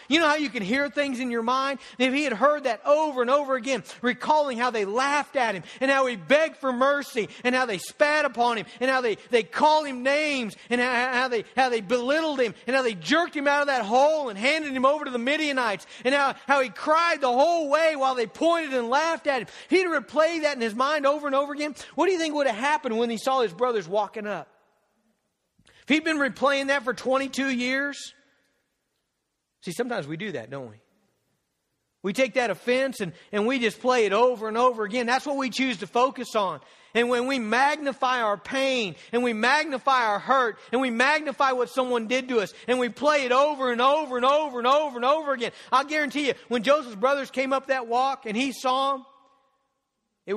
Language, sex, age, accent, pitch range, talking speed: English, male, 40-59, American, 235-280 Hz, 230 wpm